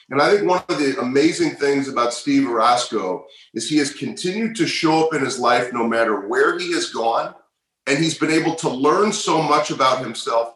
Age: 40-59